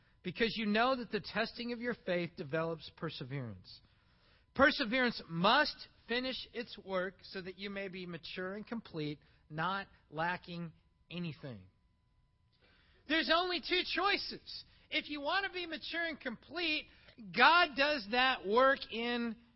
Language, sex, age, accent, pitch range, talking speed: English, male, 50-69, American, 185-290 Hz, 135 wpm